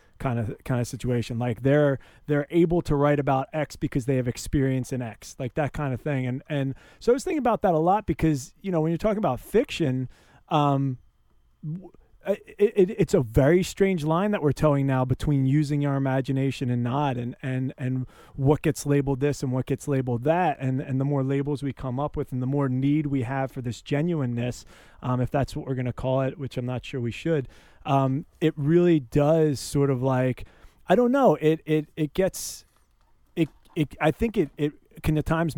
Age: 30-49